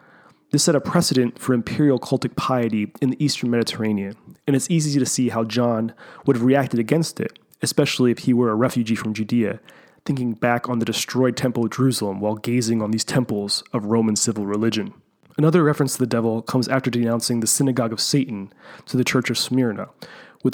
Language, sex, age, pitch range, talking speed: English, male, 30-49, 115-140 Hz, 195 wpm